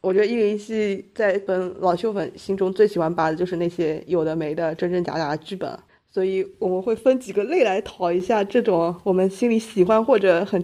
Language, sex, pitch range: Chinese, female, 180-220 Hz